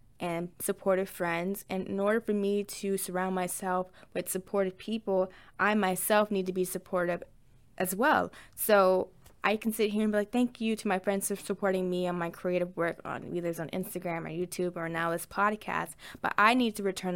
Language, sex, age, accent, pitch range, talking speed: English, female, 10-29, American, 180-210 Hz, 200 wpm